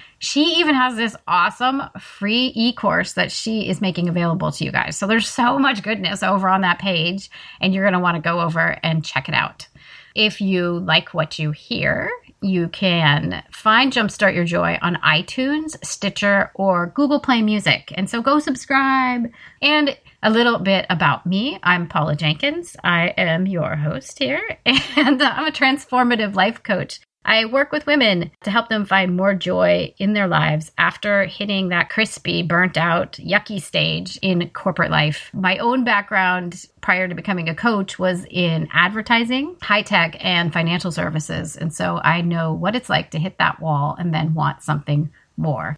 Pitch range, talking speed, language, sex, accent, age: 170-235 Hz, 175 wpm, English, female, American, 30-49